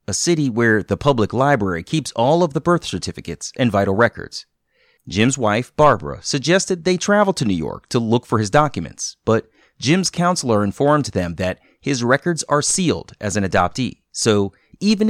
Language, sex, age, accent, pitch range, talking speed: English, male, 30-49, American, 105-150 Hz, 175 wpm